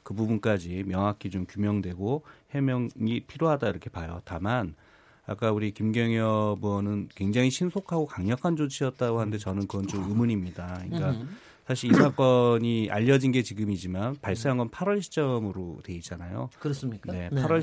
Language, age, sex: Korean, 30-49, male